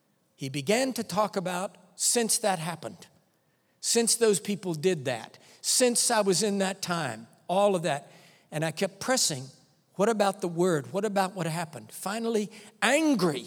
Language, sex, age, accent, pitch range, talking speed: English, male, 60-79, American, 150-205 Hz, 160 wpm